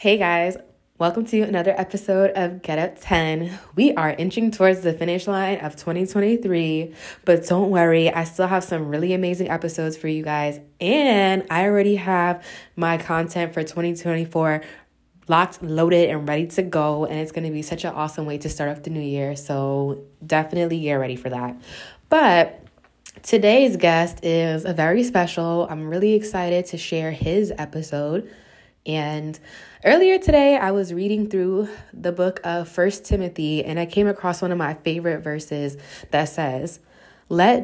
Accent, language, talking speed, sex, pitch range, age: American, English, 165 wpm, female, 155-180 Hz, 20-39